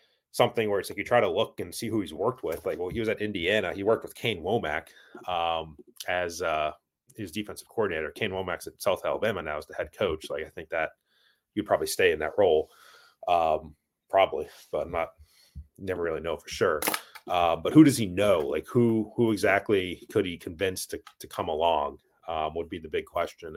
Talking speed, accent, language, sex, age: 215 wpm, American, English, male, 30-49